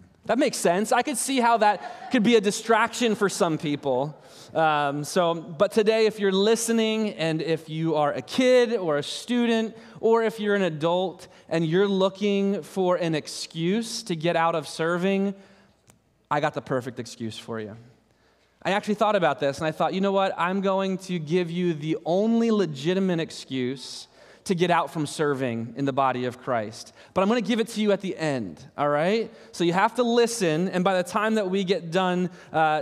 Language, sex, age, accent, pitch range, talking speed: English, male, 20-39, American, 145-195 Hz, 205 wpm